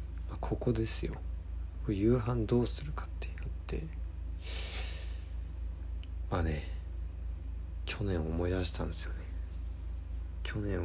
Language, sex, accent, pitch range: Japanese, male, native, 80-100 Hz